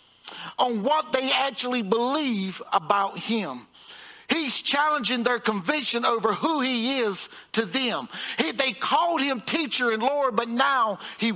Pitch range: 190-255 Hz